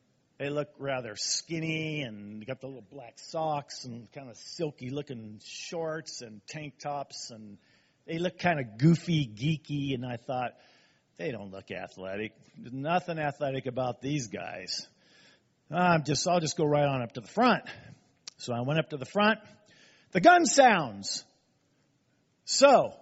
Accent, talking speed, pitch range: American, 155 wpm, 140-215 Hz